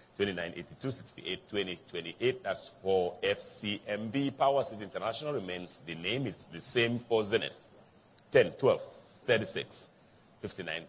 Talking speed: 125 wpm